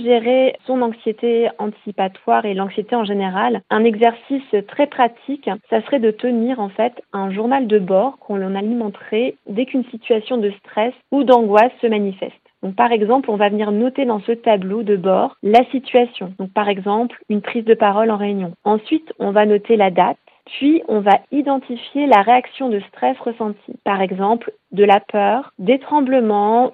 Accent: French